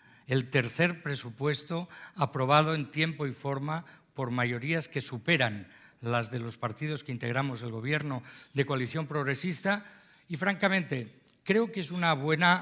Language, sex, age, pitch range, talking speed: Spanish, male, 50-69, 130-175 Hz, 145 wpm